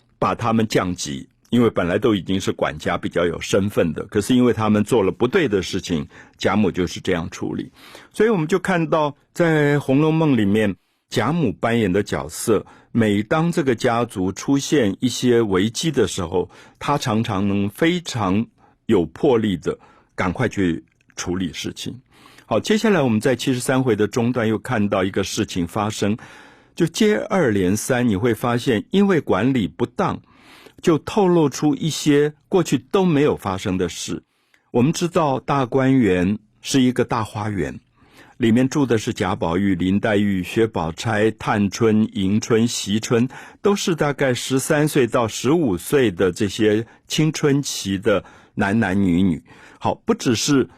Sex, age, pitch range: male, 50-69, 100-145 Hz